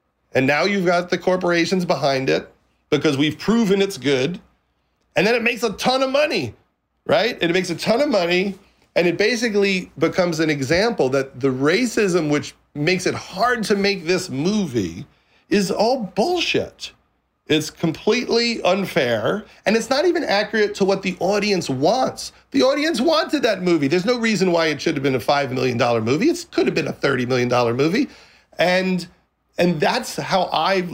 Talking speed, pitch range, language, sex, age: 180 wpm, 150-215 Hz, English, male, 40-59